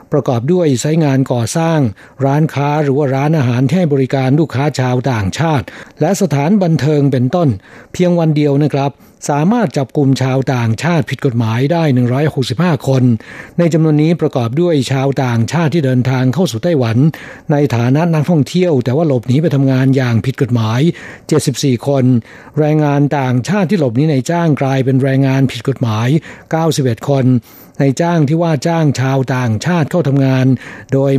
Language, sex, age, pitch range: Thai, male, 60-79, 130-155 Hz